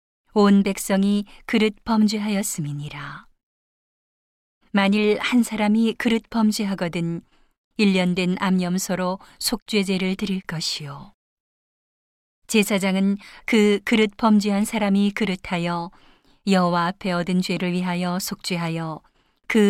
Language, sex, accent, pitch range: Korean, female, native, 180-210 Hz